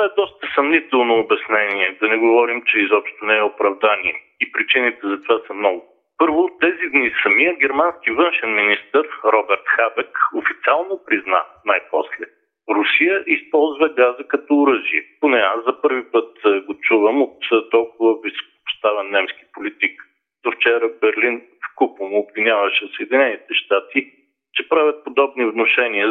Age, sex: 50-69, male